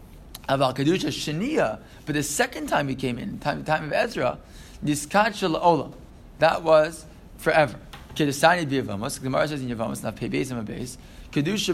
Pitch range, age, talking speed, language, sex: 130-175 Hz, 20-39, 155 wpm, English, male